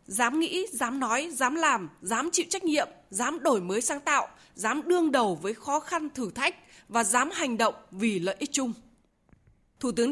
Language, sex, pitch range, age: Vietnamese, female, 230-315 Hz, 20-39